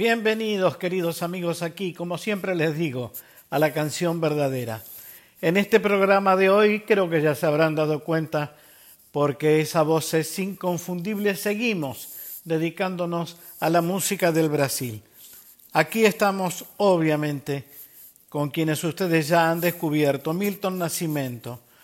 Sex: male